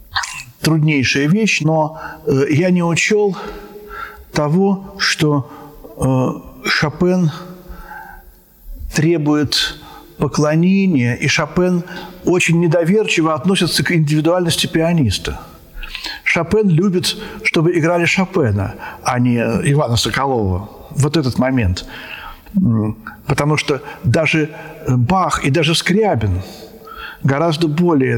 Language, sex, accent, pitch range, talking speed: Russian, male, native, 135-175 Hz, 85 wpm